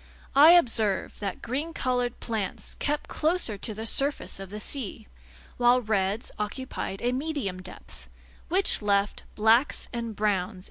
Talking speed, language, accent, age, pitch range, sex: 135 wpm, English, American, 30-49, 190-260 Hz, female